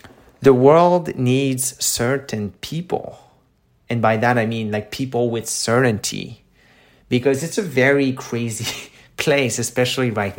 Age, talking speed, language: 30-49, 125 wpm, English